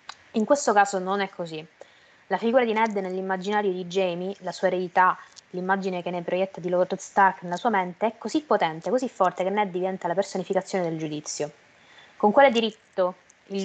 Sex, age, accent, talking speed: female, 20-39, native, 185 wpm